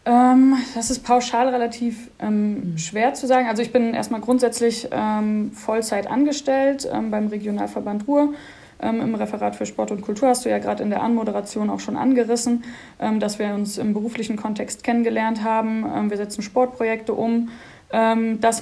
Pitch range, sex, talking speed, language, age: 215-245 Hz, female, 175 wpm, German, 20-39